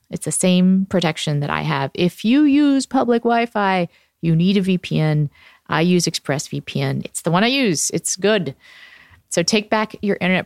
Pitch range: 155-210 Hz